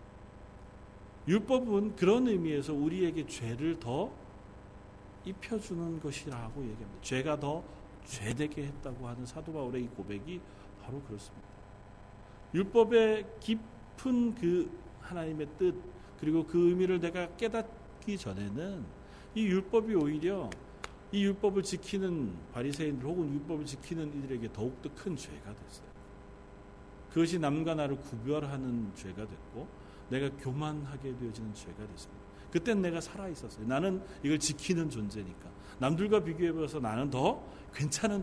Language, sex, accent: Korean, male, native